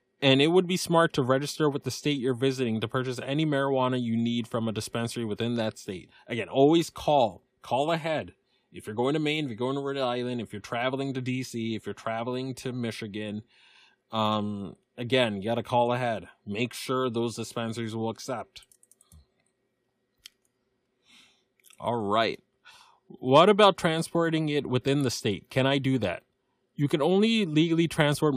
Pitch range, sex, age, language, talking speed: 115-145 Hz, male, 20-39, English, 170 wpm